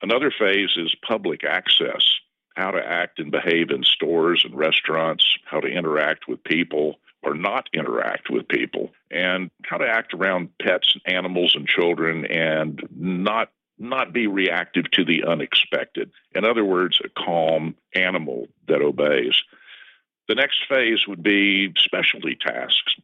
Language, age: English, 50-69